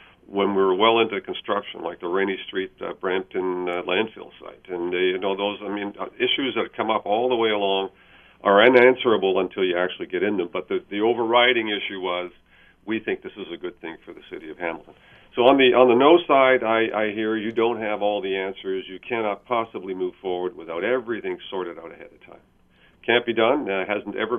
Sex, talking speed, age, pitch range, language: male, 220 wpm, 50-69, 95-120 Hz, English